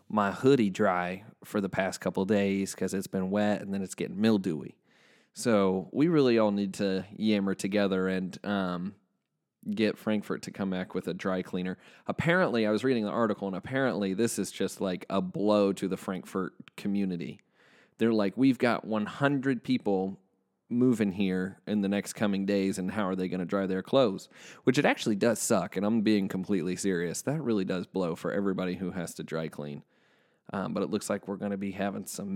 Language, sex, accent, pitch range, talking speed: English, male, American, 95-135 Hz, 200 wpm